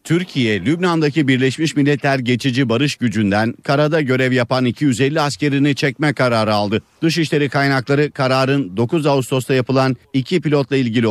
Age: 50-69